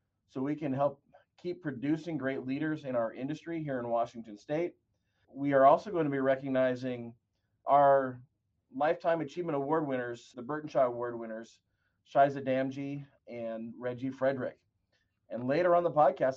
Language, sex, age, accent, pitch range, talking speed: English, male, 30-49, American, 120-155 Hz, 150 wpm